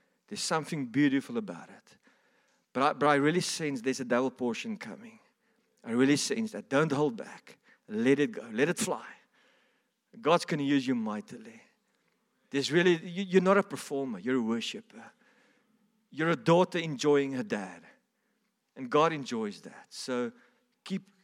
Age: 50-69